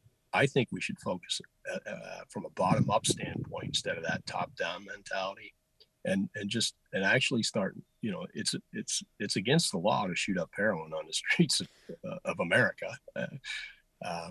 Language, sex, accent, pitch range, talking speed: English, male, American, 100-125 Hz, 180 wpm